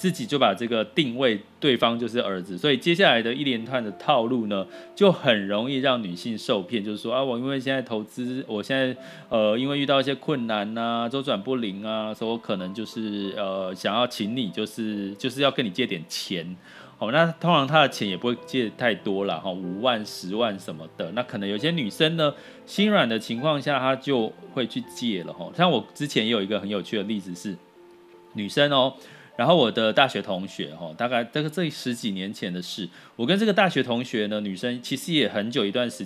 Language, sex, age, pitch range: Chinese, male, 30-49, 105-145 Hz